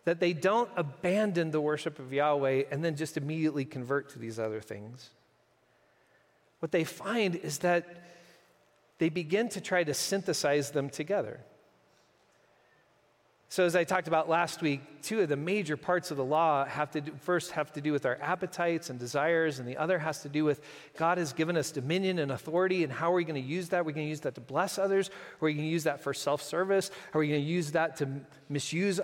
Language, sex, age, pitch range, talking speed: English, male, 40-59, 155-215 Hz, 215 wpm